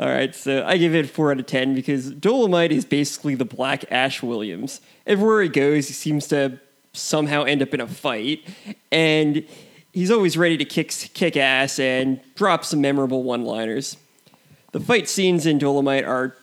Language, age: English, 20-39